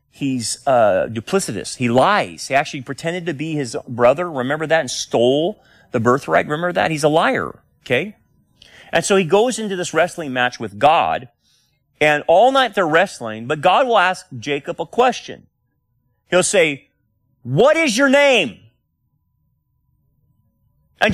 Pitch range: 140-230 Hz